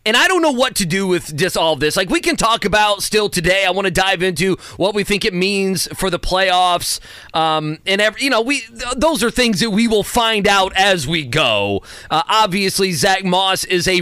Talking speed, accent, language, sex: 225 wpm, American, English, male